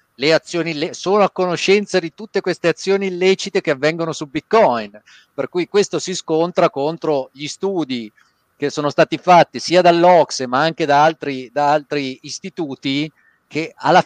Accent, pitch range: native, 140-185 Hz